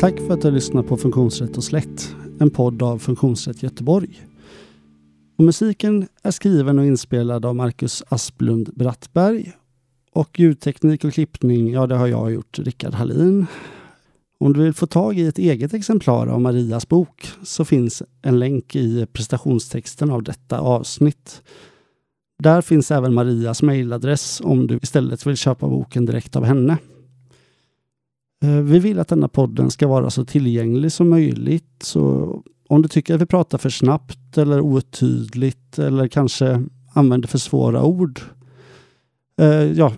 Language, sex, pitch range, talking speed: Swedish, male, 120-155 Hz, 150 wpm